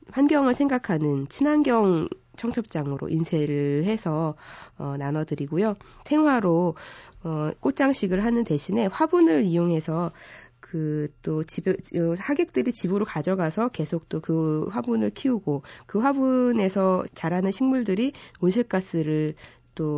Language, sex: Korean, female